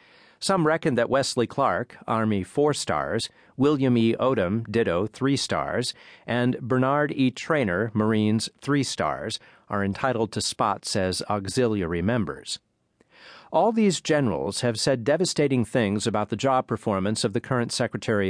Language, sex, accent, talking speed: English, male, American, 140 wpm